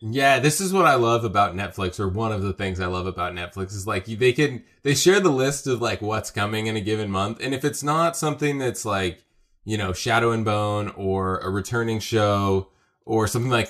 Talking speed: 230 wpm